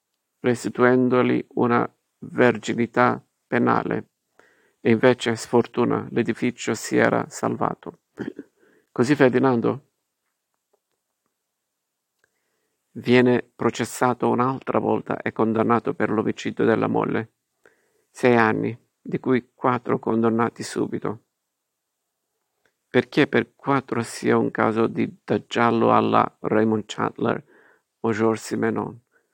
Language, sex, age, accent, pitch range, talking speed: Italian, male, 50-69, native, 110-125 Hz, 90 wpm